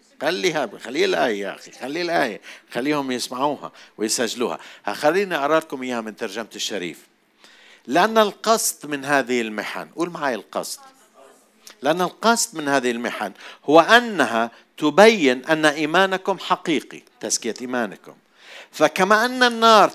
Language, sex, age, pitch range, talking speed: Arabic, male, 50-69, 125-195 Hz, 120 wpm